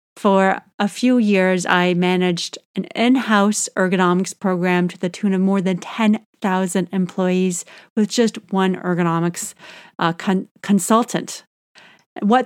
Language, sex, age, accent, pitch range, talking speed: English, female, 30-49, American, 185-220 Hz, 120 wpm